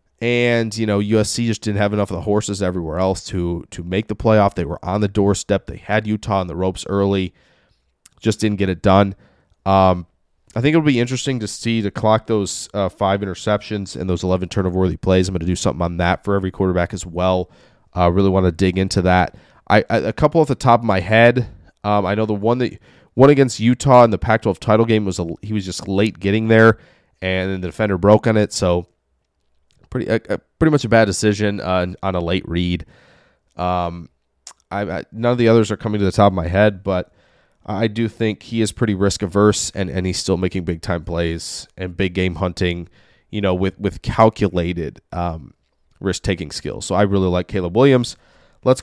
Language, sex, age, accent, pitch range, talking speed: English, male, 20-39, American, 90-110 Hz, 220 wpm